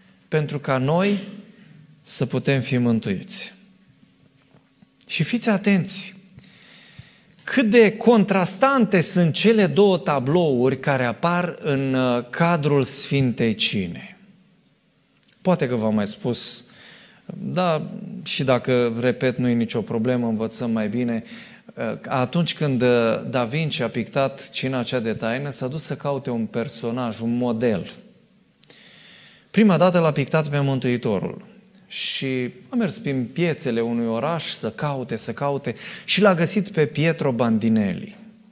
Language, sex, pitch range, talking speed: Romanian, male, 125-190 Hz, 125 wpm